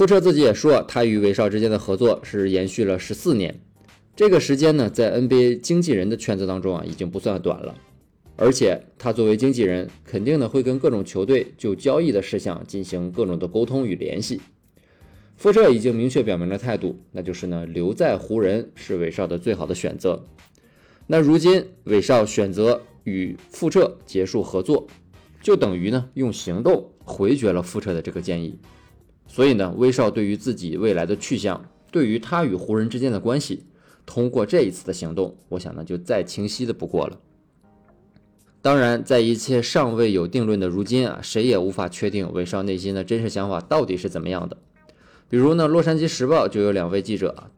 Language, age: Chinese, 20-39